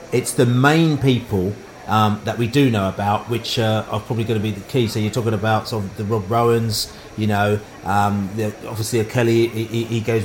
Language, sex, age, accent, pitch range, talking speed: English, male, 40-59, British, 115-135 Hz, 215 wpm